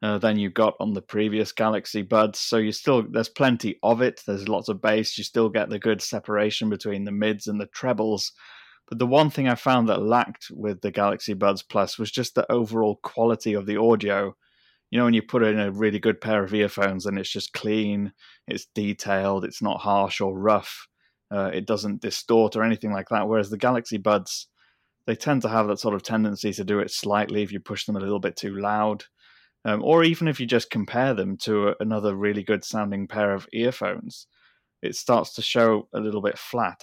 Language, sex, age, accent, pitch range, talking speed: English, male, 20-39, British, 100-115 Hz, 220 wpm